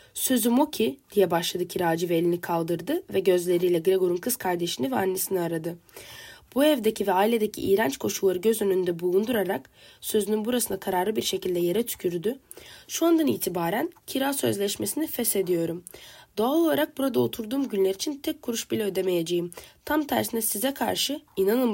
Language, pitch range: Turkish, 185-250 Hz